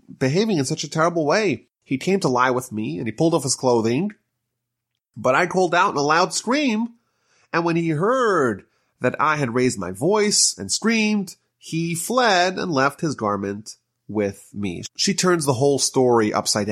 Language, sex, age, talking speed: English, male, 30-49, 185 wpm